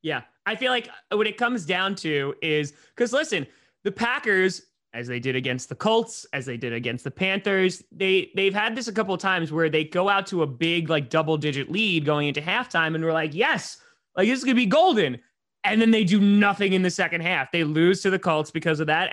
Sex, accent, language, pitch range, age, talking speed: male, American, English, 145-200 Hz, 20-39, 240 wpm